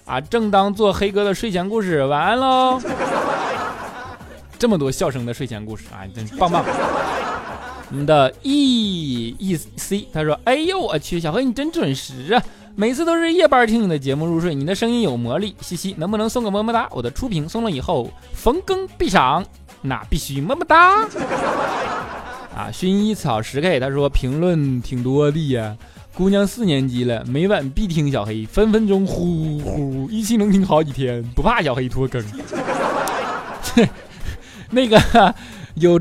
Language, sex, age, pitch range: Chinese, male, 20-39, 140-220 Hz